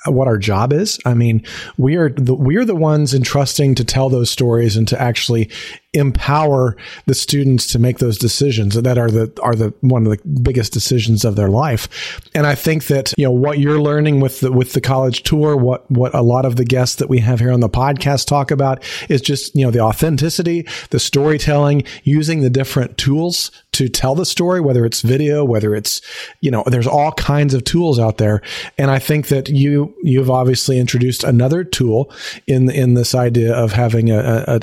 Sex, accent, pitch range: male, American, 120-145 Hz